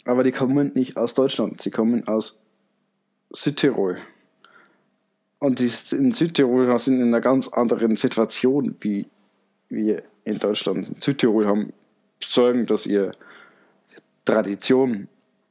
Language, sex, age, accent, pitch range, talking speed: German, male, 20-39, German, 105-130 Hz, 120 wpm